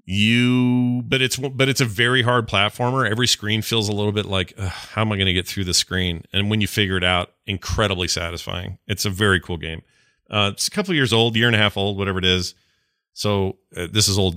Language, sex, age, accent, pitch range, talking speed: English, male, 40-59, American, 90-110 Hz, 240 wpm